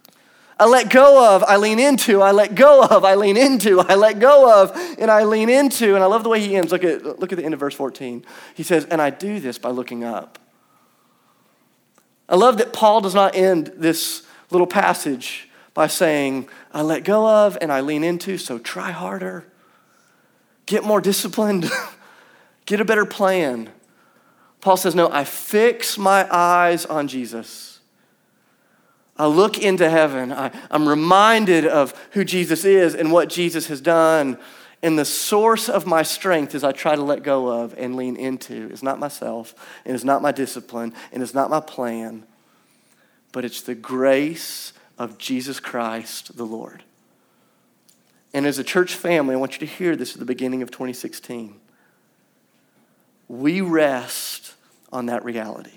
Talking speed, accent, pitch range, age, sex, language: 175 wpm, American, 130-195 Hz, 30-49, male, English